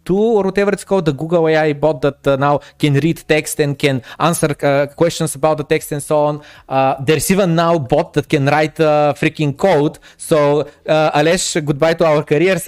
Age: 20-39